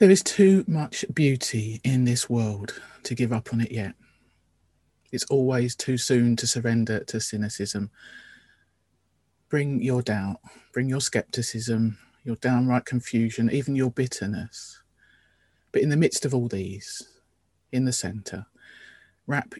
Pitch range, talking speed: 90-125 Hz, 140 wpm